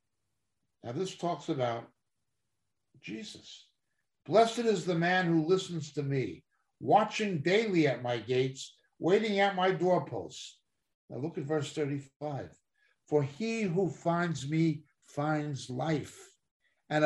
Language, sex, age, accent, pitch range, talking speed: English, male, 60-79, American, 115-175 Hz, 125 wpm